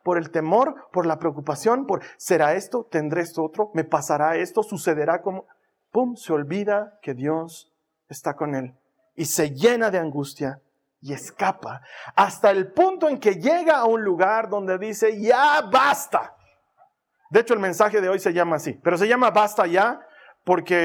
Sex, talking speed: male, 175 wpm